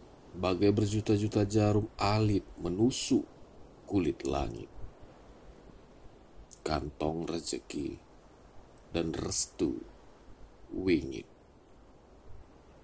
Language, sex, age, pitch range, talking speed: Malay, male, 40-59, 85-105 Hz, 55 wpm